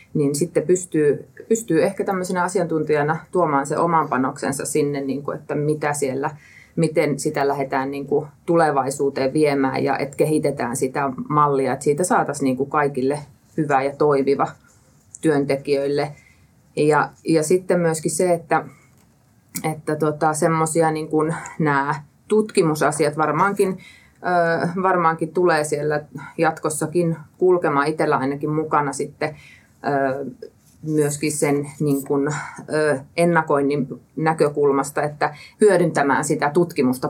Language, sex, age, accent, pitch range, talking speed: Finnish, female, 30-49, native, 140-160 Hz, 105 wpm